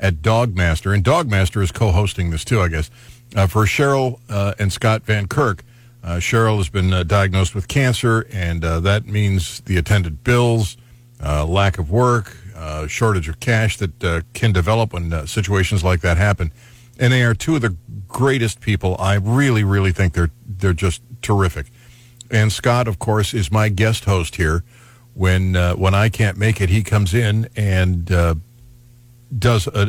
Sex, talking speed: male, 180 wpm